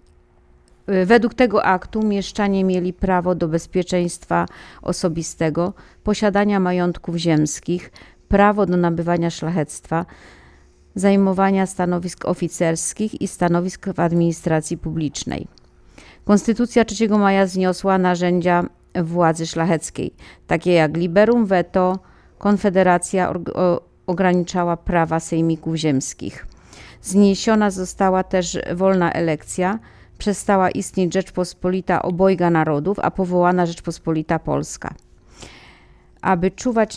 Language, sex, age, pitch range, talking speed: Polish, female, 40-59, 170-195 Hz, 90 wpm